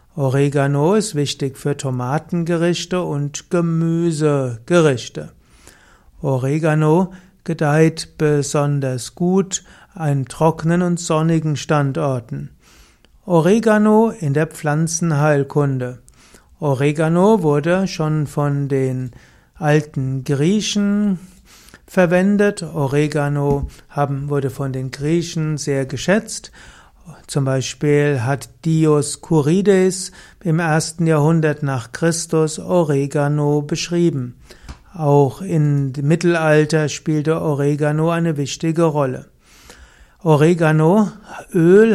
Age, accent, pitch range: 60-79, German, 145-170 Hz